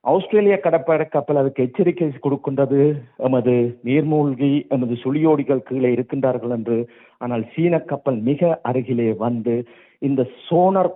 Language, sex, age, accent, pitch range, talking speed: Tamil, male, 50-69, native, 135-170 Hz, 110 wpm